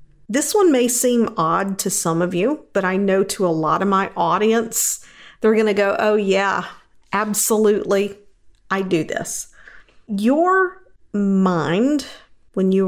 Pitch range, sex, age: 190-230 Hz, female, 50-69